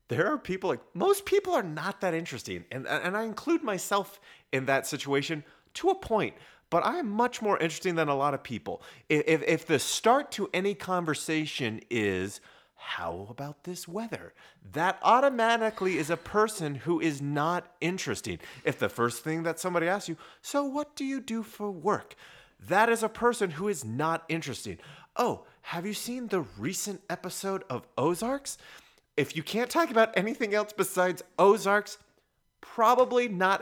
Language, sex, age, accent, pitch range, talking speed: English, male, 30-49, American, 135-210 Hz, 170 wpm